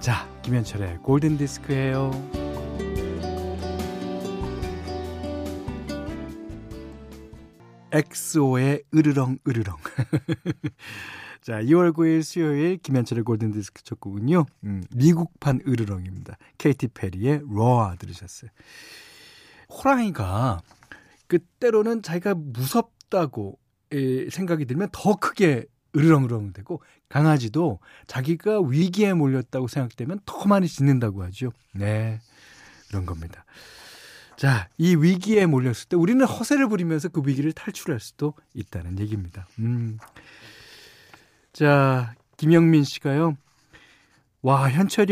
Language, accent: Korean, native